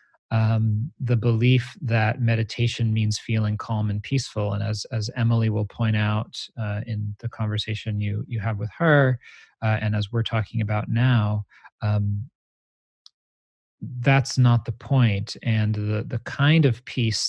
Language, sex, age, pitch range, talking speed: English, male, 30-49, 105-120 Hz, 155 wpm